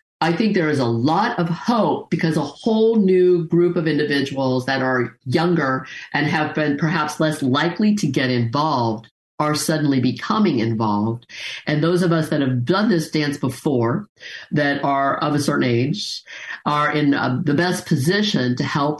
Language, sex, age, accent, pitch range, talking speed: English, female, 50-69, American, 135-175 Hz, 175 wpm